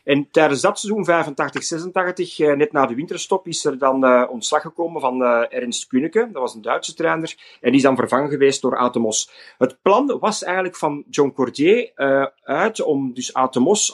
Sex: male